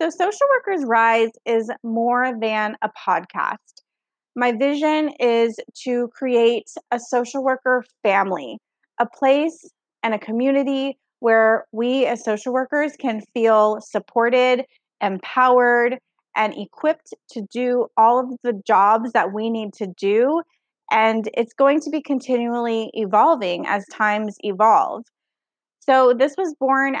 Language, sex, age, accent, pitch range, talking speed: English, female, 20-39, American, 215-270 Hz, 130 wpm